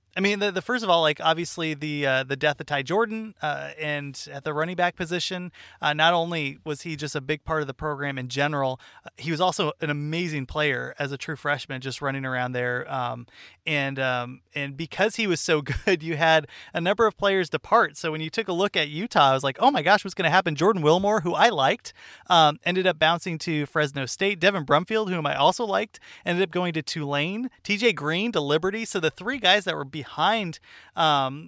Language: English